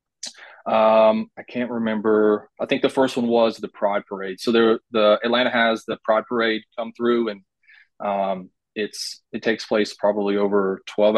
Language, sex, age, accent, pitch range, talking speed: English, male, 20-39, American, 105-125 Hz, 170 wpm